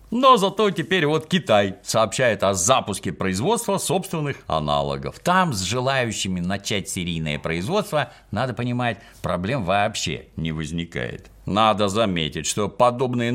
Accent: native